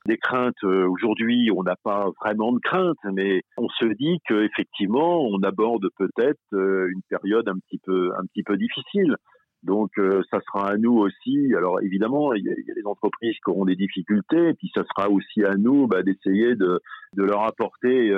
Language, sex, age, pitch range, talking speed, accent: French, male, 50-69, 95-115 Hz, 190 wpm, French